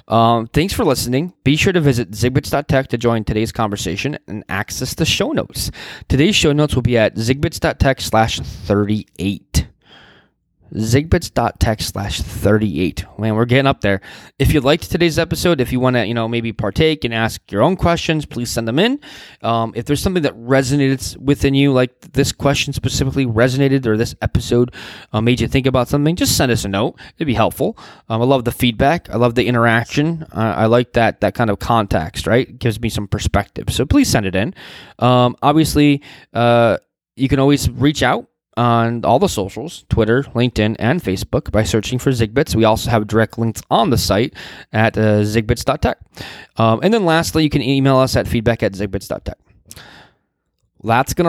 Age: 20-39